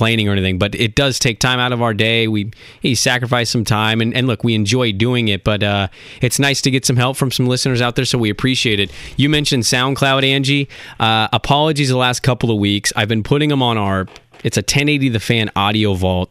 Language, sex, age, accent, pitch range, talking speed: English, male, 20-39, American, 105-125 Hz, 235 wpm